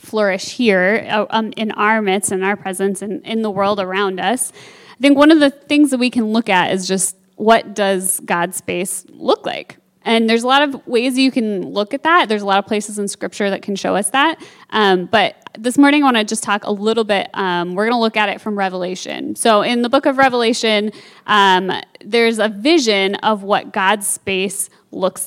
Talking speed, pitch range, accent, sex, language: 220 wpm, 200-255 Hz, American, female, English